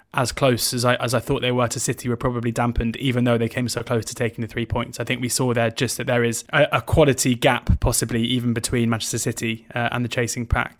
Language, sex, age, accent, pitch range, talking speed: English, male, 20-39, British, 115-130 Hz, 260 wpm